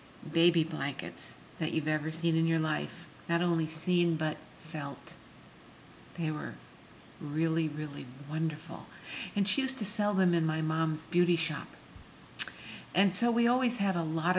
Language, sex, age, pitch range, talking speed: English, female, 50-69, 155-185 Hz, 155 wpm